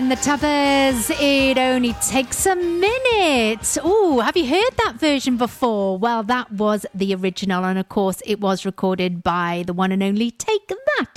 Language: English